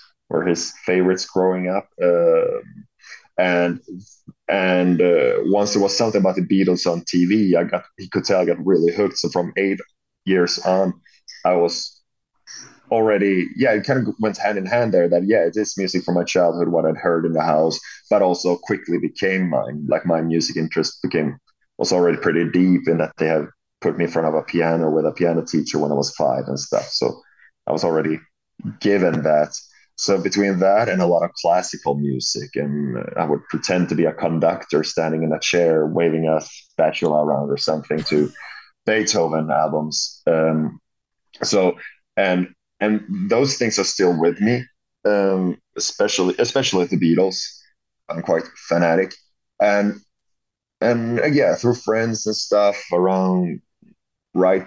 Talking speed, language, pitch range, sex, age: 170 wpm, English, 85-100 Hz, male, 30-49